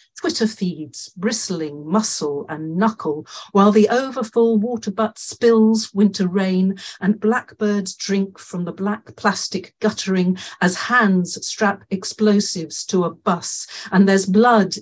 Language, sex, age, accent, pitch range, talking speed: English, female, 50-69, British, 185-220 Hz, 130 wpm